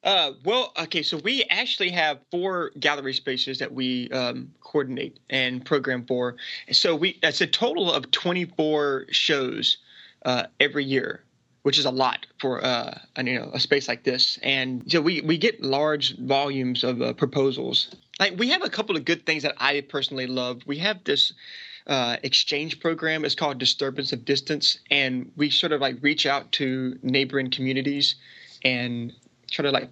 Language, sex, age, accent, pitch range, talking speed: English, male, 30-49, American, 130-155 Hz, 175 wpm